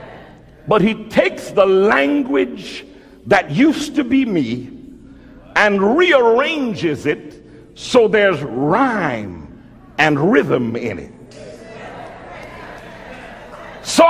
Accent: American